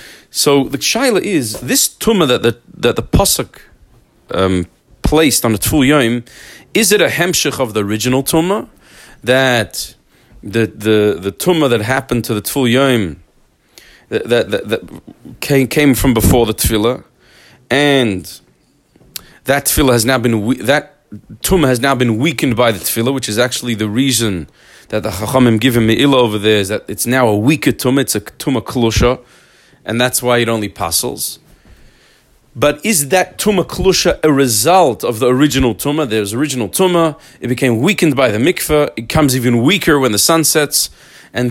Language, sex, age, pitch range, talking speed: English, male, 40-59, 110-155 Hz, 170 wpm